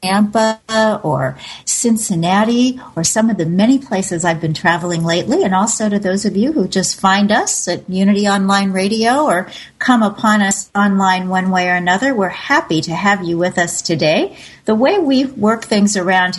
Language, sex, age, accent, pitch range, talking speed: English, female, 50-69, American, 175-220 Hz, 185 wpm